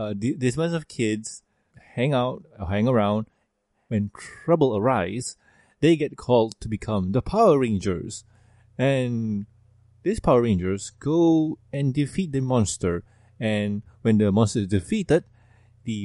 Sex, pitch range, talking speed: male, 105-135 Hz, 135 wpm